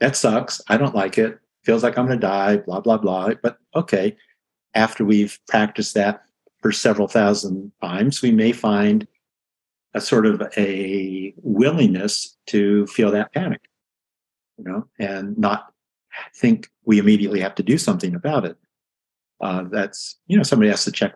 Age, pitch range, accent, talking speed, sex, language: 50-69, 95-115 Hz, American, 165 wpm, male, English